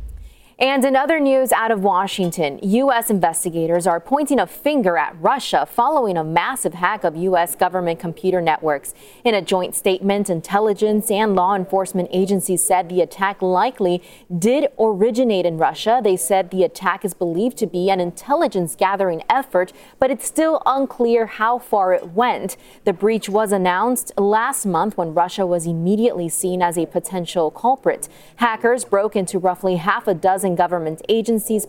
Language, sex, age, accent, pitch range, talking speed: English, female, 20-39, American, 180-230 Hz, 160 wpm